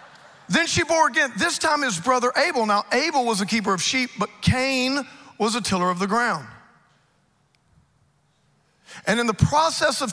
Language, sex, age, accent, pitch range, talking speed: English, male, 40-59, American, 190-255 Hz, 170 wpm